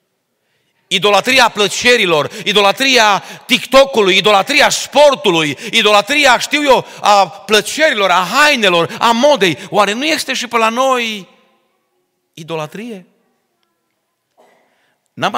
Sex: male